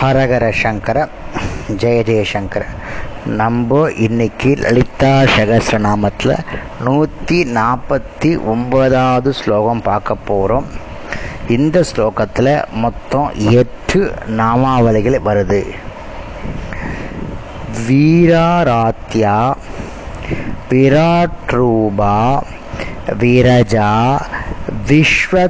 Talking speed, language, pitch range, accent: 55 wpm, Tamil, 110-140 Hz, native